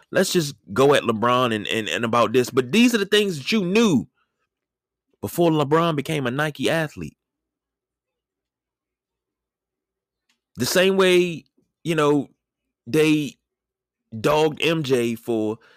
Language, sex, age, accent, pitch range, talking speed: English, male, 30-49, American, 115-155 Hz, 125 wpm